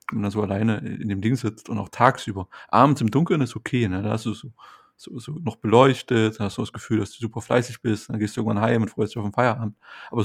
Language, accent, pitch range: German, German, 110-125 Hz